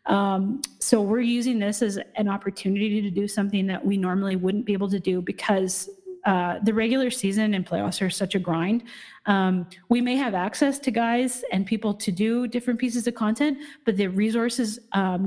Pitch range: 190-225 Hz